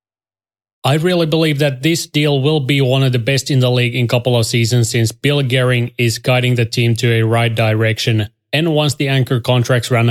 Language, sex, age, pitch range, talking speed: English, male, 20-39, 115-130 Hz, 220 wpm